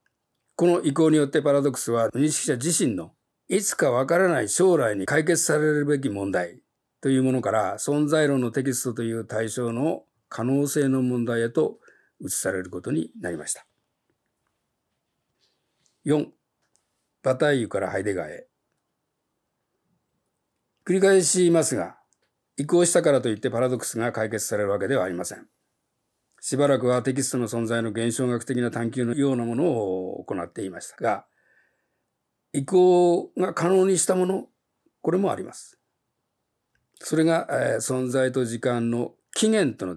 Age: 50-69